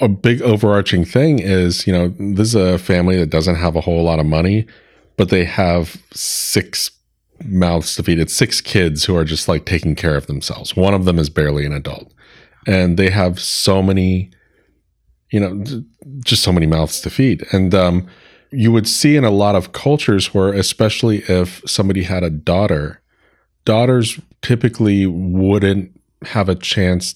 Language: English